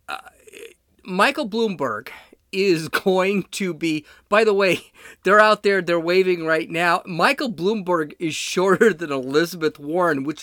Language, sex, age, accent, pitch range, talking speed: English, male, 40-59, American, 160-215 Hz, 140 wpm